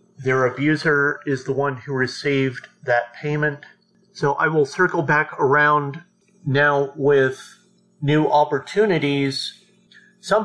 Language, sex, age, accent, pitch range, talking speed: English, male, 40-59, American, 135-165 Hz, 115 wpm